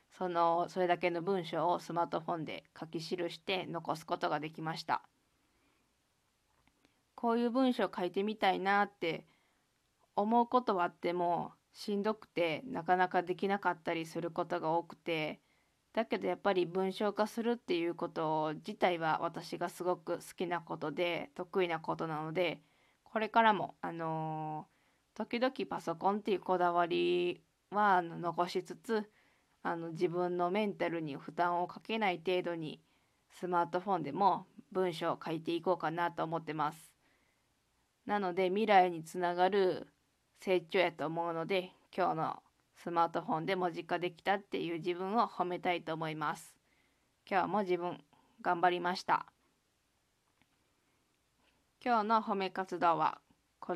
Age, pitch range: 20-39, 170-195 Hz